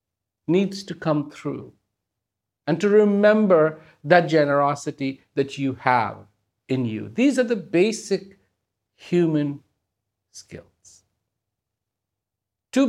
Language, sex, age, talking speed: English, male, 50-69, 100 wpm